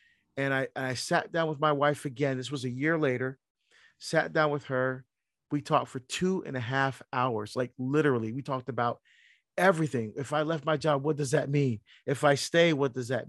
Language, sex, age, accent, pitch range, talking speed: English, male, 40-59, American, 130-165 Hz, 210 wpm